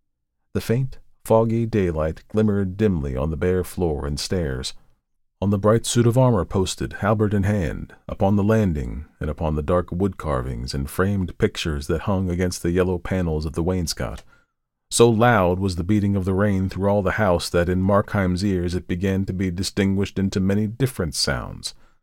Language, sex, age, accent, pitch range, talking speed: English, male, 40-59, American, 80-105 Hz, 185 wpm